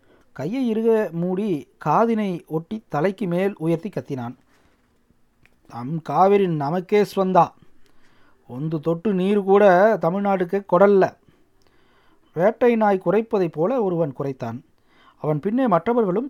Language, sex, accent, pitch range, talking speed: Tamil, male, native, 155-215 Hz, 100 wpm